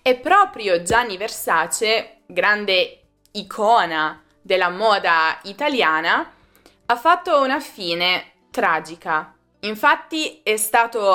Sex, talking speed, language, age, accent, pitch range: female, 90 wpm, Italian, 20-39, native, 185-250 Hz